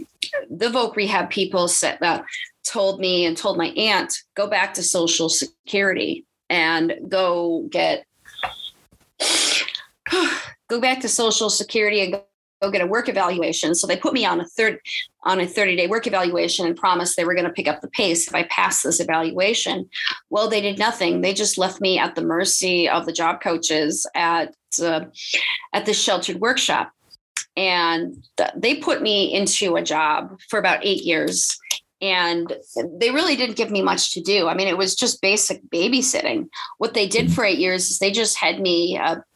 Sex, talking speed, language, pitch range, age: female, 185 wpm, English, 175-215 Hz, 30-49